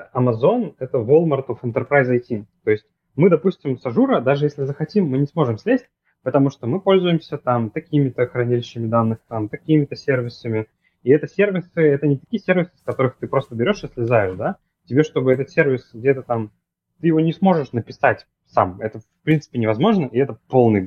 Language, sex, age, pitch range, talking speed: Russian, male, 20-39, 105-145 Hz, 185 wpm